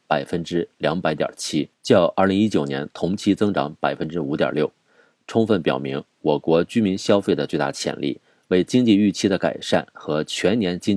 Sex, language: male, Chinese